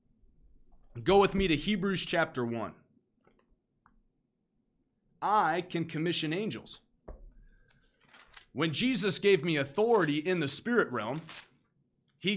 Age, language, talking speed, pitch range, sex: 30-49, English, 100 wpm, 150-195 Hz, male